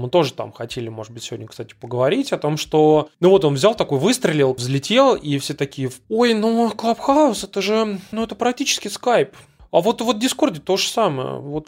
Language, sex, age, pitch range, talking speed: Russian, male, 20-39, 130-170 Hz, 205 wpm